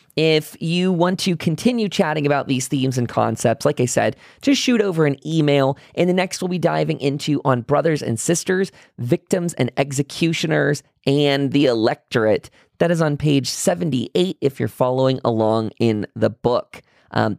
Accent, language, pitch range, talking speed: American, English, 120-170 Hz, 170 wpm